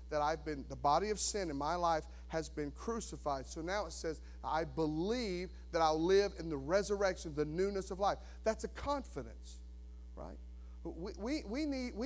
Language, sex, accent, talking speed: English, male, American, 170 wpm